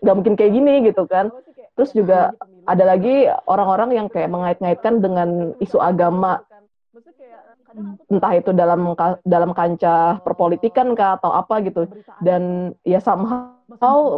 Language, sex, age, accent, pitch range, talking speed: Indonesian, female, 20-39, native, 175-210 Hz, 125 wpm